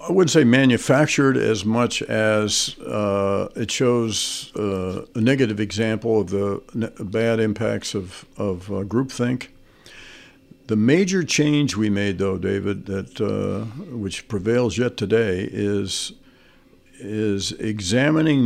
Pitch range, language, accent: 105-125 Hz, English, American